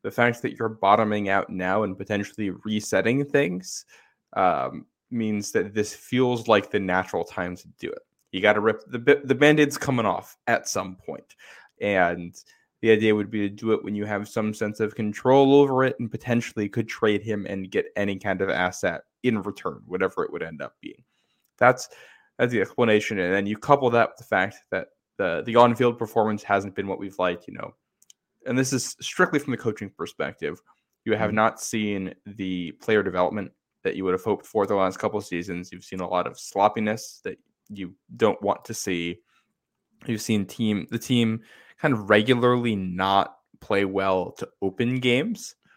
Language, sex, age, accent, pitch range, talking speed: English, male, 10-29, American, 100-120 Hz, 195 wpm